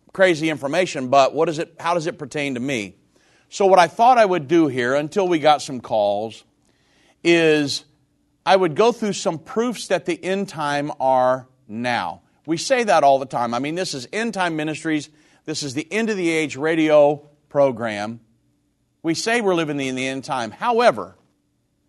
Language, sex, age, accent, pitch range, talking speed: English, male, 50-69, American, 140-185 Hz, 190 wpm